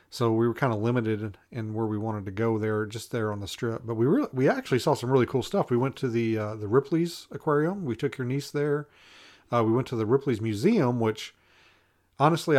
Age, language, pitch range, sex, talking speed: 40-59, English, 110-140 Hz, male, 240 wpm